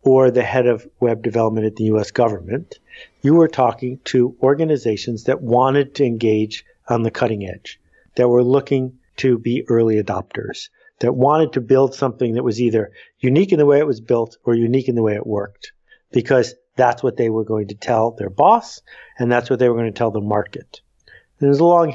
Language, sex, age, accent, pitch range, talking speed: English, male, 50-69, American, 115-135 Hz, 205 wpm